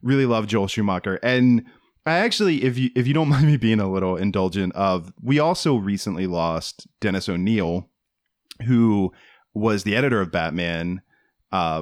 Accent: American